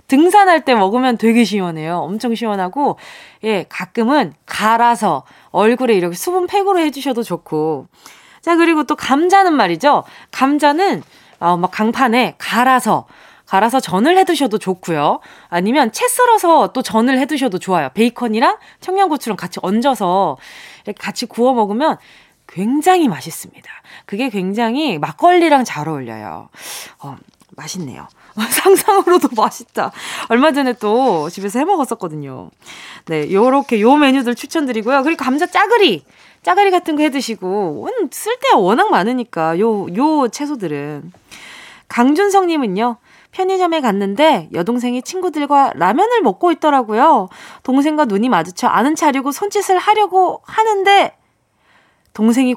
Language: Korean